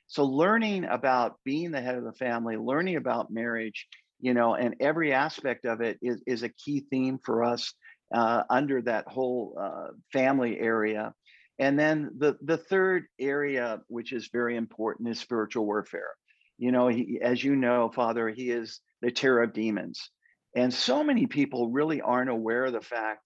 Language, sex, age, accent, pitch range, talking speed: English, male, 50-69, American, 115-140 Hz, 180 wpm